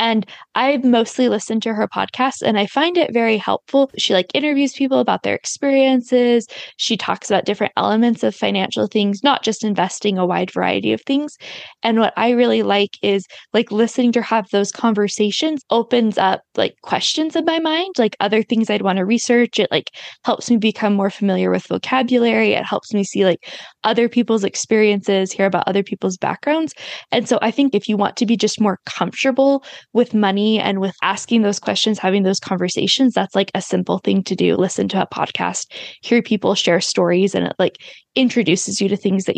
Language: English